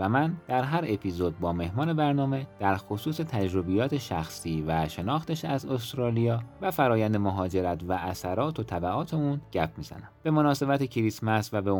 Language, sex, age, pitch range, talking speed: Persian, male, 30-49, 90-130 Hz, 160 wpm